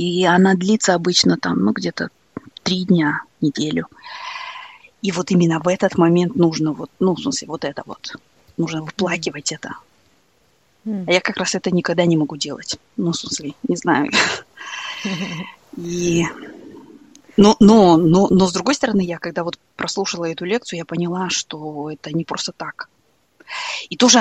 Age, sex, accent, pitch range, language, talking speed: 20-39, female, native, 170-215 Hz, Russian, 155 wpm